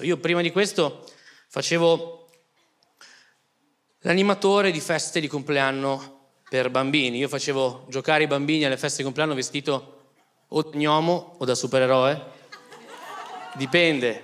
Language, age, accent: Italian, 20-39, native